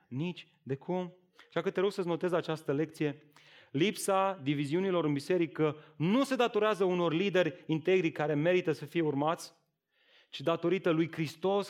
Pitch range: 130-170 Hz